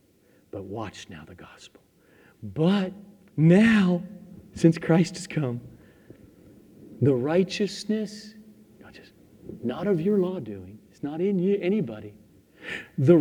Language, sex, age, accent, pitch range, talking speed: English, male, 50-69, American, 120-200 Hz, 95 wpm